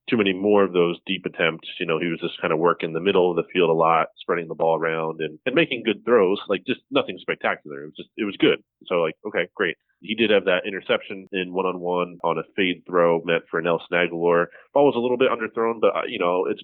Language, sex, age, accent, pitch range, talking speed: English, male, 30-49, American, 85-115 Hz, 250 wpm